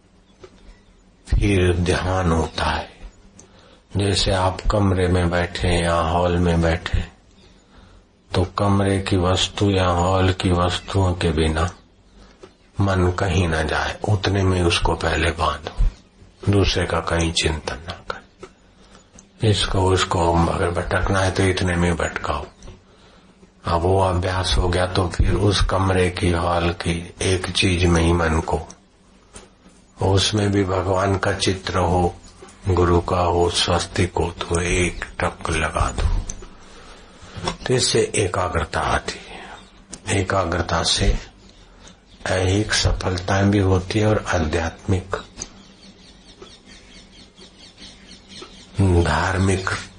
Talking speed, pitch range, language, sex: 115 wpm, 85-95 Hz, Hindi, male